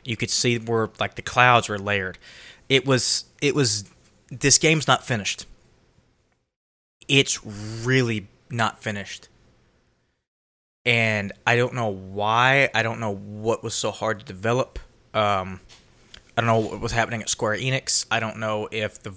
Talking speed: 155 wpm